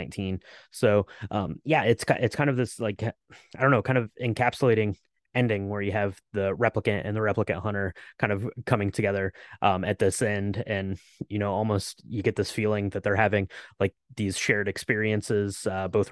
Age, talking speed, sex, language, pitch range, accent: 20-39, 185 wpm, male, English, 100-120 Hz, American